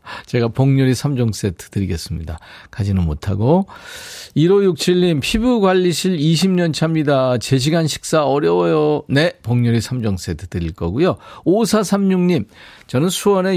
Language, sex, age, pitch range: Korean, male, 40-59, 115-175 Hz